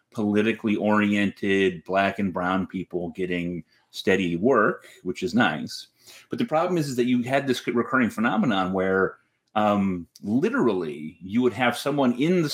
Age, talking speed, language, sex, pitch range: 30-49, 155 wpm, English, male, 95-125 Hz